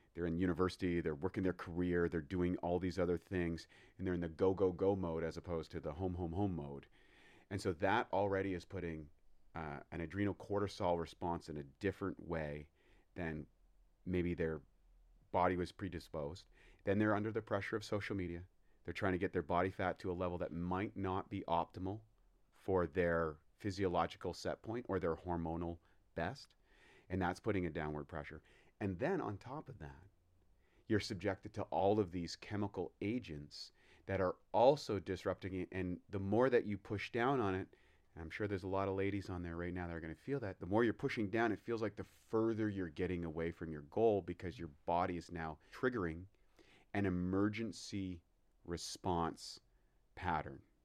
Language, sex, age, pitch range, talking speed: English, male, 30-49, 85-100 Hz, 190 wpm